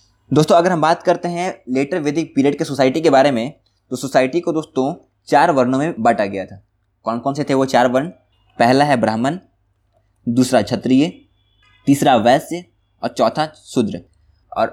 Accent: native